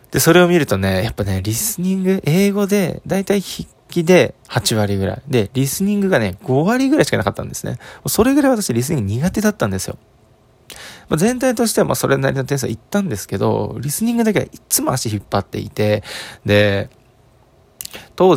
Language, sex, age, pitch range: Japanese, male, 20-39, 105-155 Hz